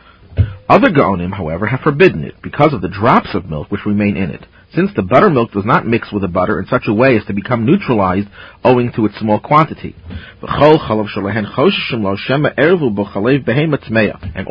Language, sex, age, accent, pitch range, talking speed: English, male, 40-59, American, 100-130 Hz, 160 wpm